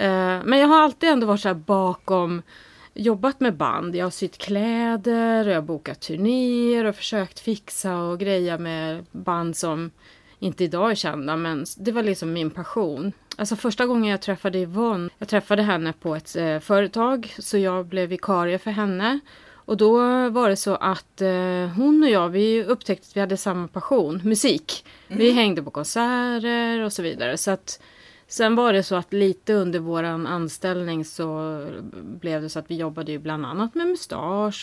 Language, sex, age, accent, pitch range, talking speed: English, female, 30-49, Swedish, 175-230 Hz, 180 wpm